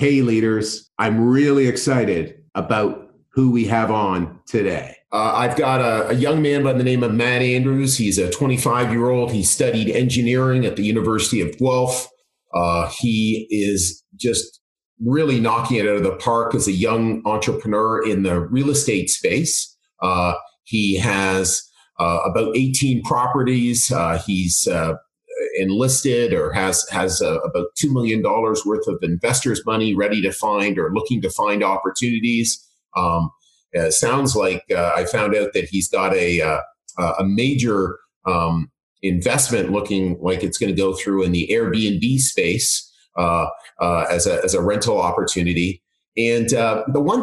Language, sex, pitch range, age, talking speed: English, male, 95-125 Hz, 40-59, 160 wpm